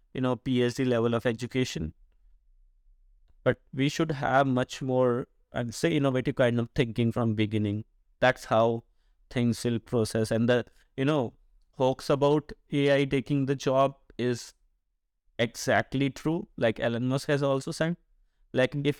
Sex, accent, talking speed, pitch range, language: male, Indian, 145 wpm, 115-140 Hz, English